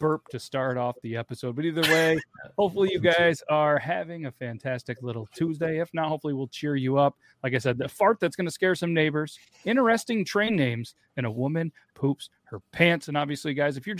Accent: American